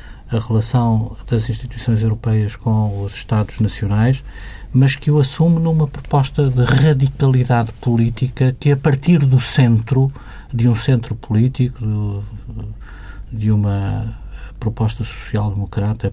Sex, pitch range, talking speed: male, 105-125 Hz, 115 wpm